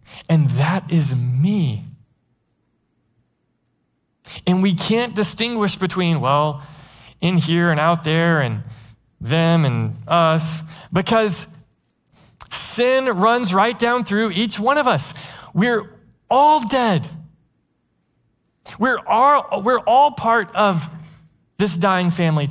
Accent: American